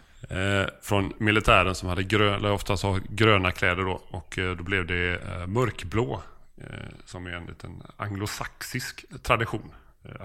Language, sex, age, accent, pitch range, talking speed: Swedish, male, 30-49, native, 95-115 Hz, 140 wpm